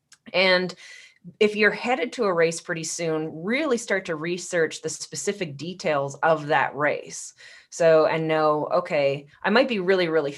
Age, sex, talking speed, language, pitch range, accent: 20-39, female, 160 wpm, English, 150-185 Hz, American